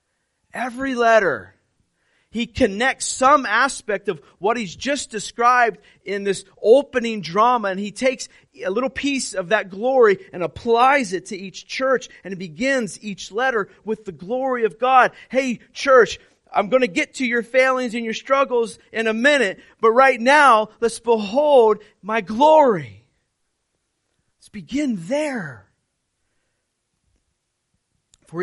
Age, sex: 30-49, male